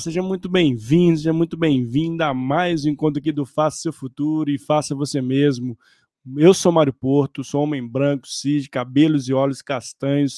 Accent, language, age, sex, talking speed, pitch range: Brazilian, Portuguese, 20-39, male, 185 wpm, 135-155 Hz